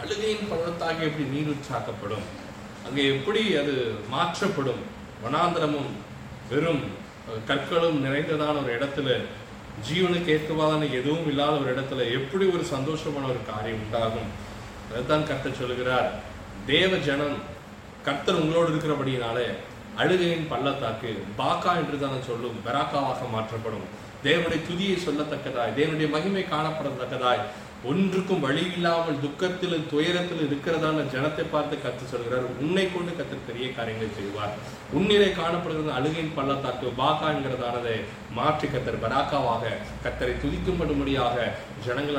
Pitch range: 120-155 Hz